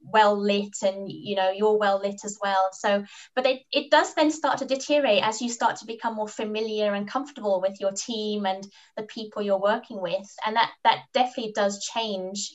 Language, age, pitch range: English, 20-39, 205-255 Hz